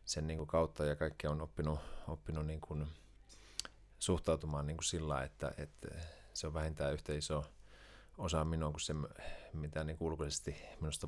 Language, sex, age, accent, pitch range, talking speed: Finnish, male, 30-49, native, 75-90 Hz, 145 wpm